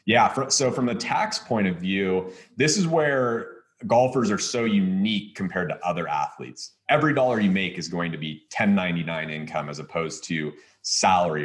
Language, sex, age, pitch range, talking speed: English, male, 30-49, 95-135 Hz, 175 wpm